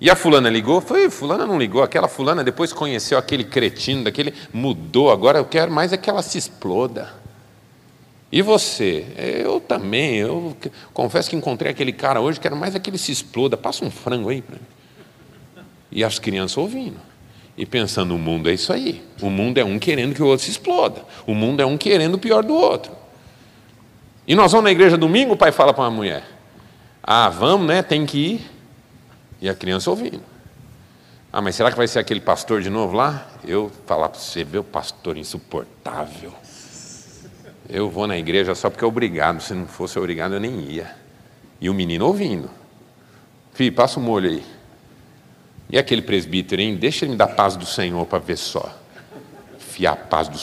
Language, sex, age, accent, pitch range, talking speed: Portuguese, male, 40-59, Brazilian, 105-170 Hz, 195 wpm